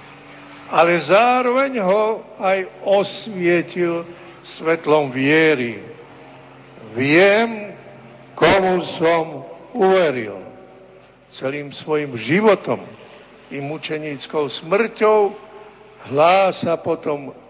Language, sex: Slovak, male